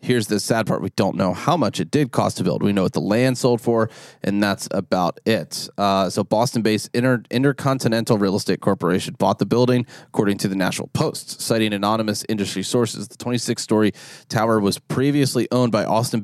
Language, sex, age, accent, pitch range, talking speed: English, male, 30-49, American, 105-130 Hz, 205 wpm